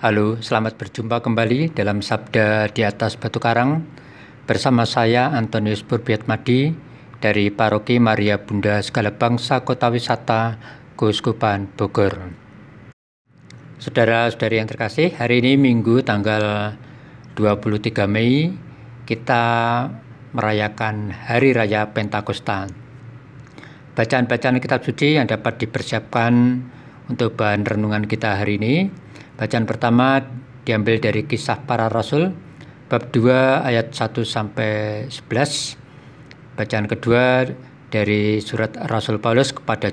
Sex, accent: male, native